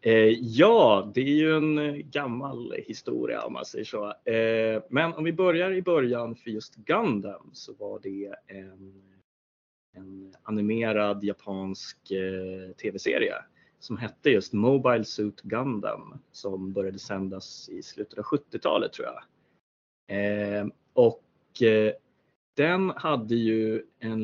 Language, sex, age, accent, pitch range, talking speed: Swedish, male, 30-49, native, 100-135 Hz, 120 wpm